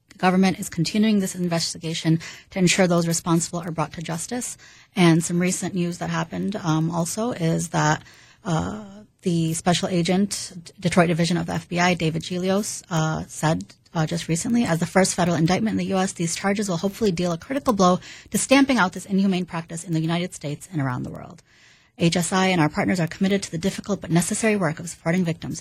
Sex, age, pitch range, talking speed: female, 30-49, 165-195 Hz, 200 wpm